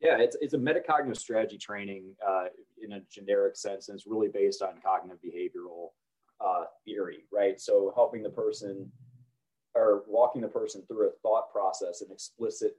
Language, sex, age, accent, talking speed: English, male, 30-49, American, 170 wpm